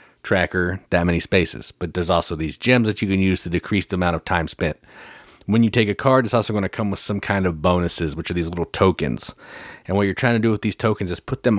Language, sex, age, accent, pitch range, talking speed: English, male, 30-49, American, 85-100 Hz, 270 wpm